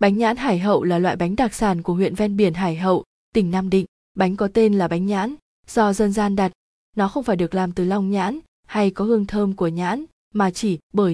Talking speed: 240 wpm